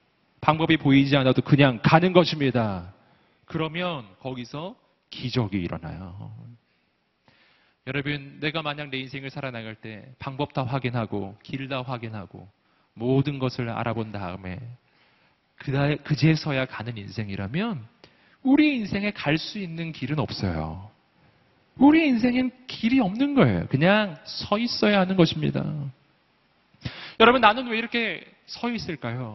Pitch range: 120-165 Hz